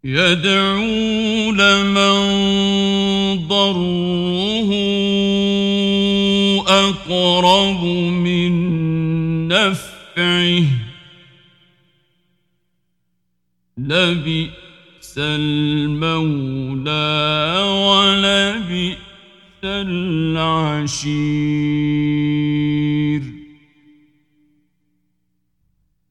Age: 50-69